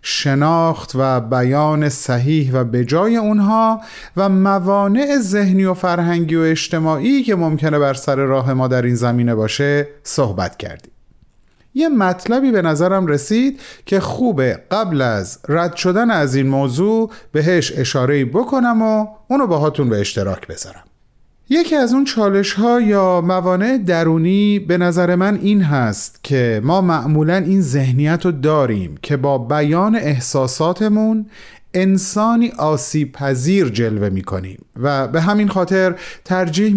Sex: male